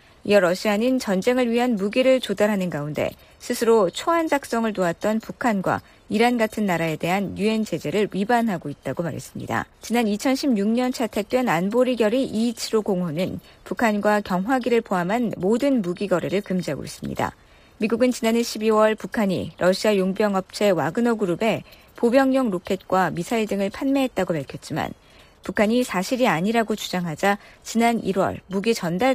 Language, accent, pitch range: Korean, native, 185-240 Hz